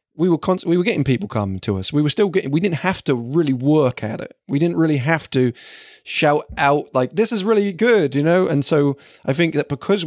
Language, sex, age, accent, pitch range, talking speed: English, male, 30-49, British, 120-150 Hz, 250 wpm